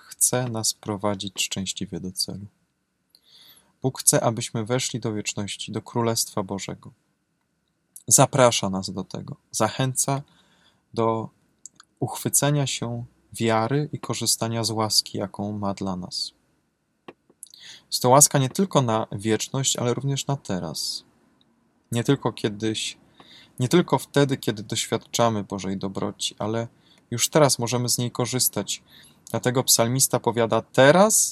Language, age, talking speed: Polish, 20-39, 125 wpm